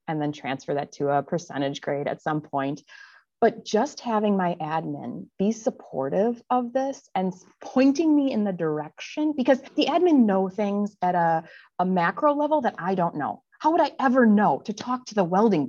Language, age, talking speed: English, 30-49, 190 wpm